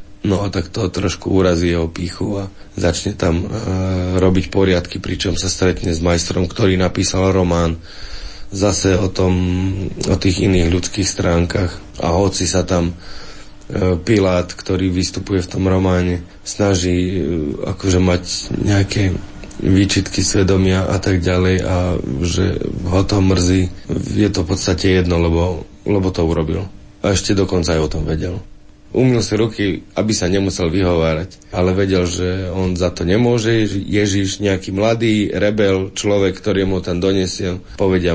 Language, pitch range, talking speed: Slovak, 90-100 Hz, 150 wpm